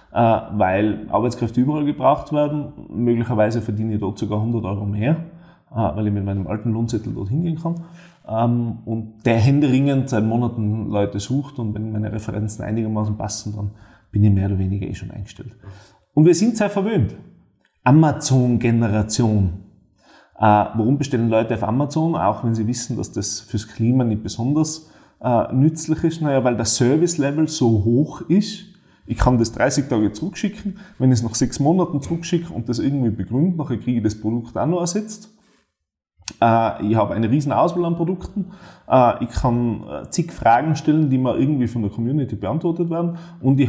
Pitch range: 105-145 Hz